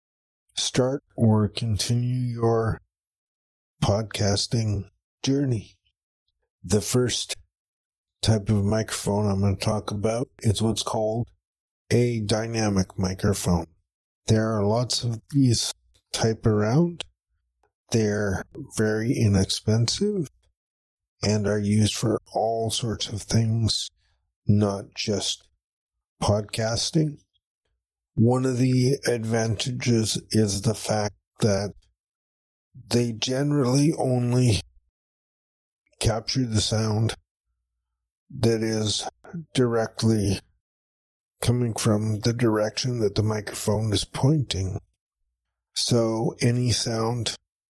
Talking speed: 90 wpm